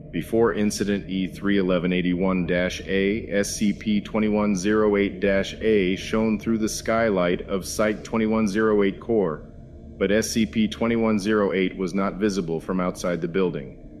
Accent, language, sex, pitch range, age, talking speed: American, English, male, 95-125 Hz, 40-59, 105 wpm